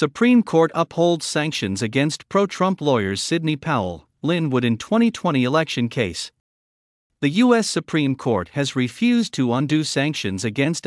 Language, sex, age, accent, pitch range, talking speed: English, male, 50-69, American, 115-170 Hz, 130 wpm